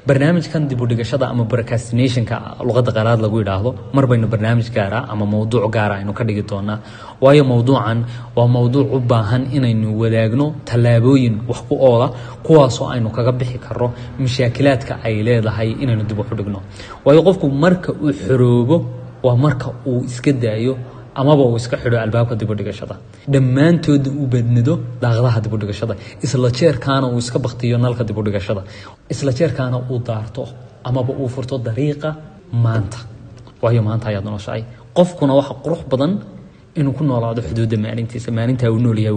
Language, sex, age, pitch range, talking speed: English, male, 30-49, 110-130 Hz, 50 wpm